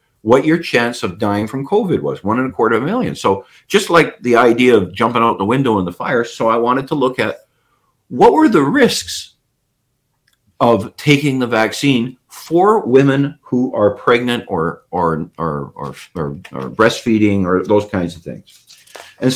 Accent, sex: American, male